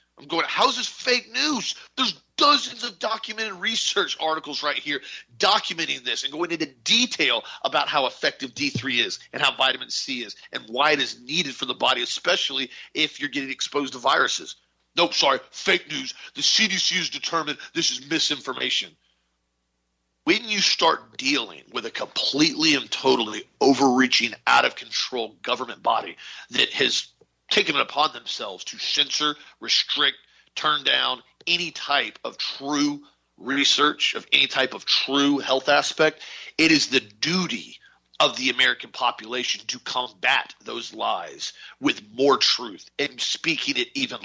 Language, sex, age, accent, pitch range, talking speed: English, male, 40-59, American, 130-220 Hz, 150 wpm